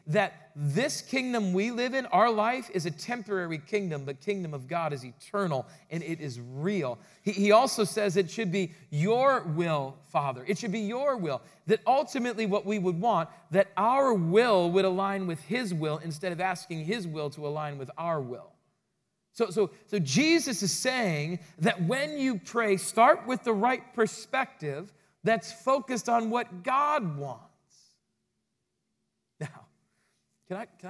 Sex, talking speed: male, 160 wpm